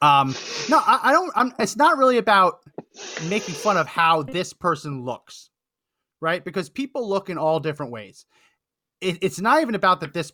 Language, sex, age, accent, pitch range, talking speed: English, male, 30-49, American, 135-205 Hz, 185 wpm